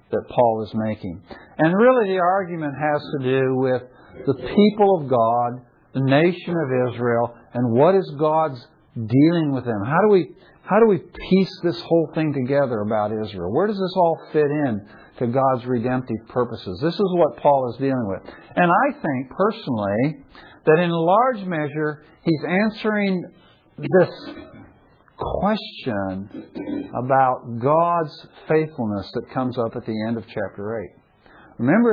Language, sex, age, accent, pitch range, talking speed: English, male, 60-79, American, 120-170 Hz, 155 wpm